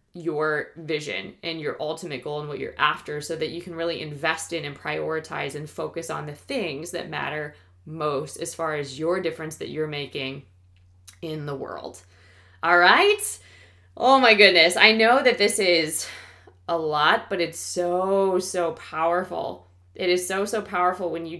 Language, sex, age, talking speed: English, female, 20-39, 175 wpm